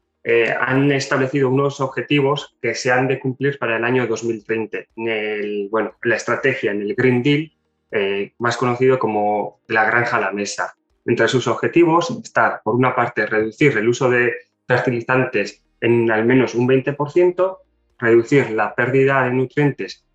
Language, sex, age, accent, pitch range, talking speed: Spanish, male, 20-39, Spanish, 115-155 Hz, 160 wpm